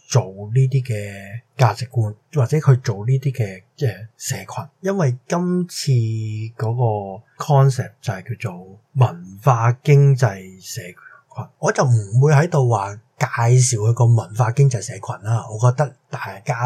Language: Chinese